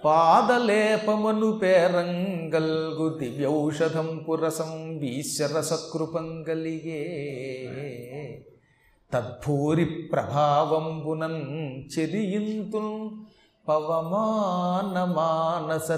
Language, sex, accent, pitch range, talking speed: Telugu, male, native, 150-195 Hz, 40 wpm